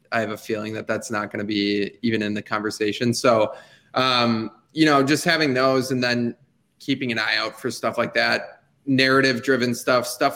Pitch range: 115-145 Hz